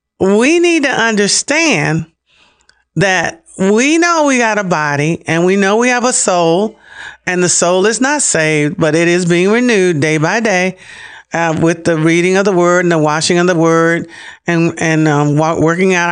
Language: English